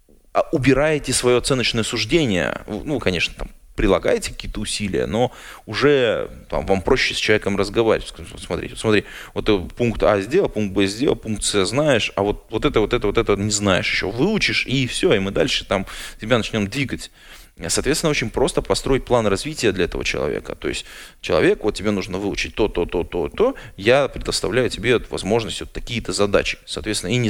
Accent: native